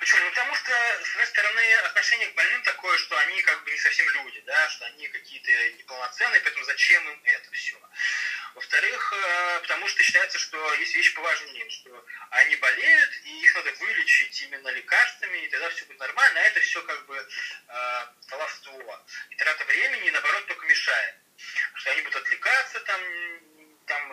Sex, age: male, 20-39